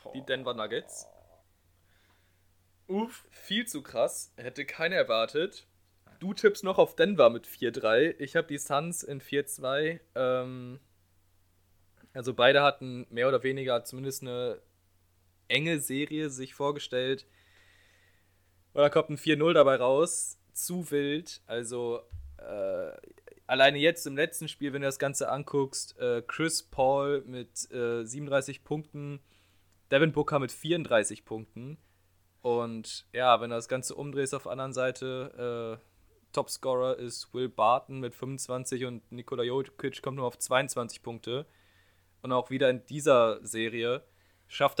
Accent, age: German, 20-39